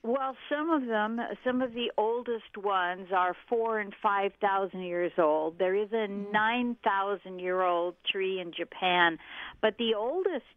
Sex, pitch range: female, 185-245 Hz